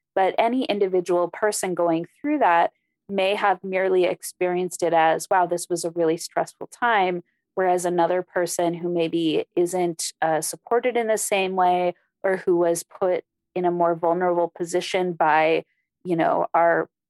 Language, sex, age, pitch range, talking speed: English, female, 20-39, 170-195 Hz, 160 wpm